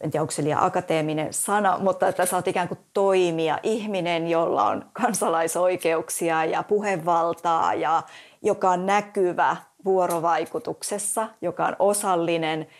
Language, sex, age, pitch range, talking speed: Finnish, female, 30-49, 165-190 Hz, 130 wpm